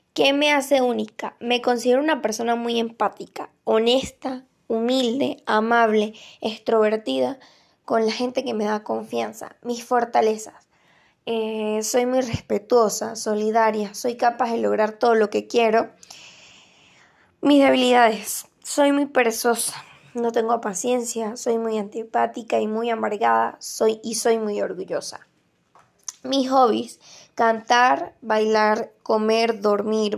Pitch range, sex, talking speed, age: 215-235 Hz, female, 120 wpm, 10-29